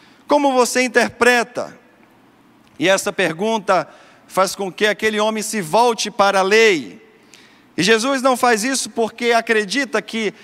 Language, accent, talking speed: Portuguese, Brazilian, 140 wpm